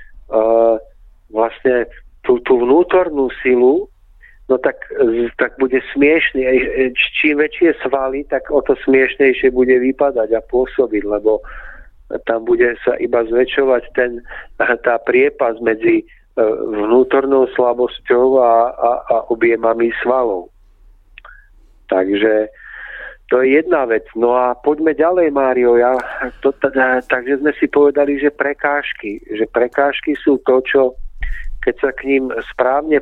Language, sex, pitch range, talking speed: Czech, male, 120-145 Hz, 120 wpm